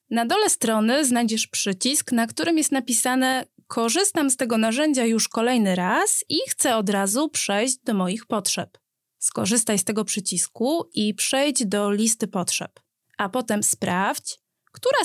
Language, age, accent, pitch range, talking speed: Polish, 20-39, native, 205-275 Hz, 150 wpm